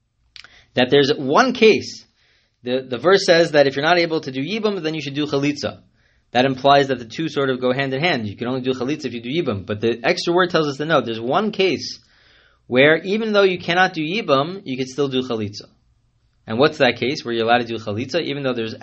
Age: 20-39